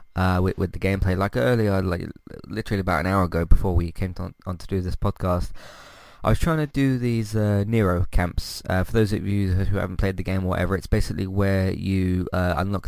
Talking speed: 235 wpm